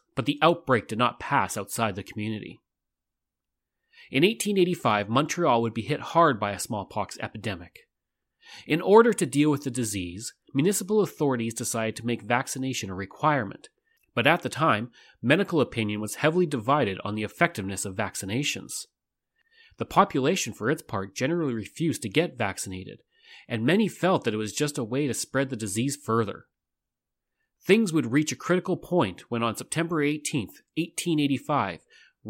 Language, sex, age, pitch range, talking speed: English, male, 30-49, 110-160 Hz, 155 wpm